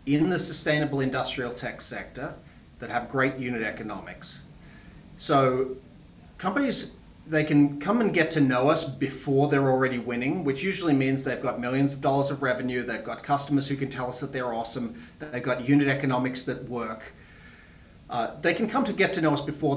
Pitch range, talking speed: 125-145 Hz, 190 wpm